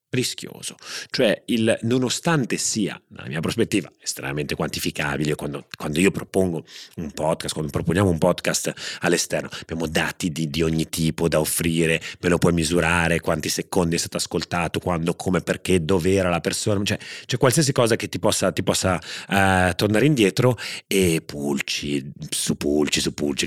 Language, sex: Italian, male